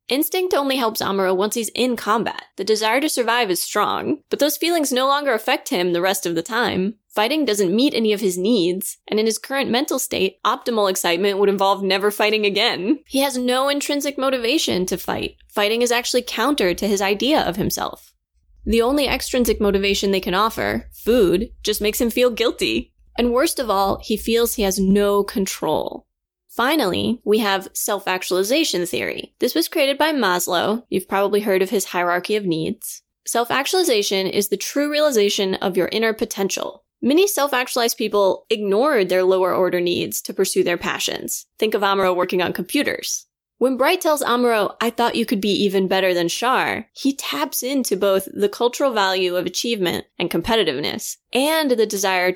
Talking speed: 180 wpm